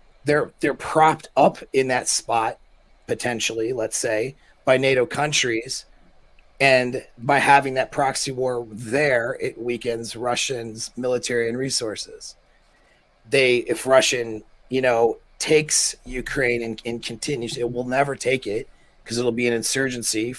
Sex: male